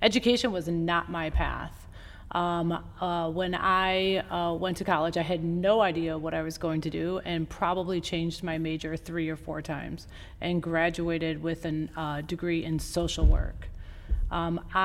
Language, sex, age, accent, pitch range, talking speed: English, female, 30-49, American, 165-190 Hz, 165 wpm